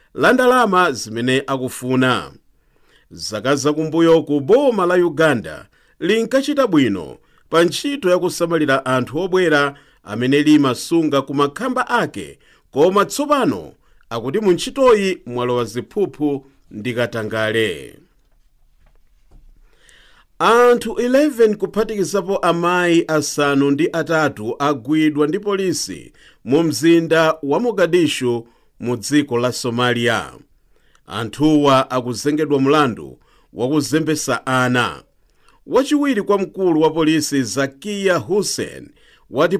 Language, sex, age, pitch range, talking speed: English, male, 50-69, 130-180 Hz, 90 wpm